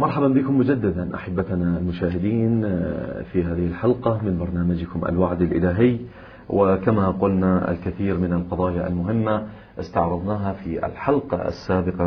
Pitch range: 90-100 Hz